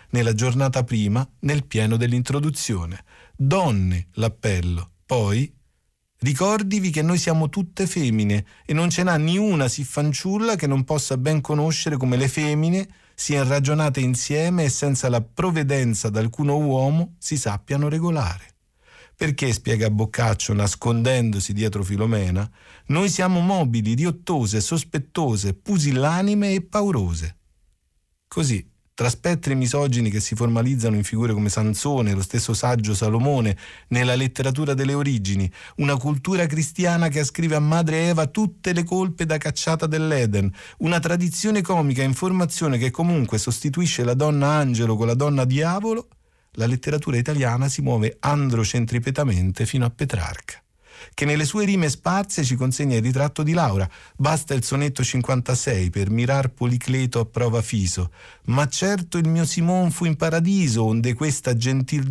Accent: native